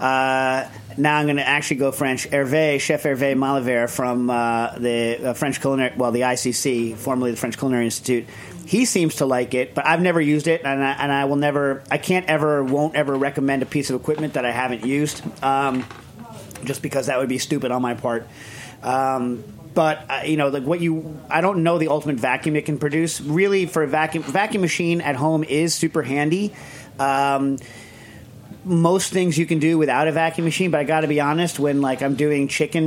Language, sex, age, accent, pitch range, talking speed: English, male, 40-59, American, 130-155 Hz, 210 wpm